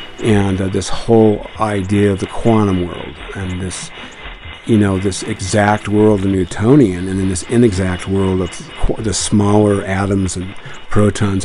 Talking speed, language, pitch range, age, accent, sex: 150 wpm, English, 95-110 Hz, 50-69, American, male